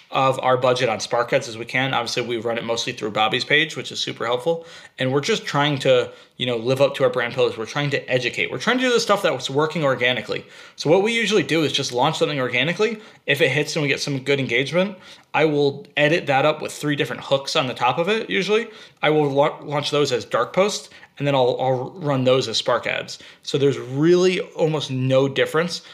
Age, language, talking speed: 20-39, English, 240 wpm